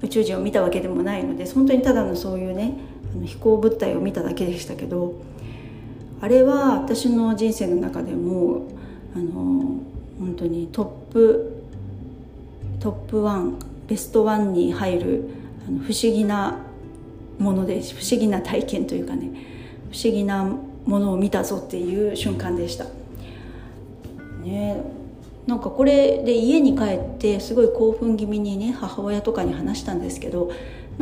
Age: 40-59